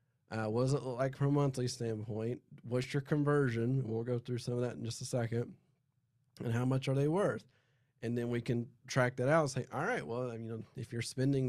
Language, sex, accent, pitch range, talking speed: English, male, American, 115-140 Hz, 240 wpm